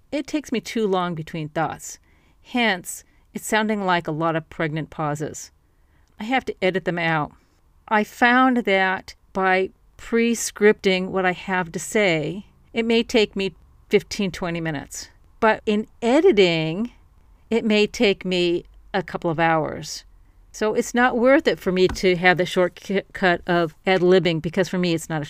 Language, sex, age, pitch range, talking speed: English, female, 40-59, 165-210 Hz, 165 wpm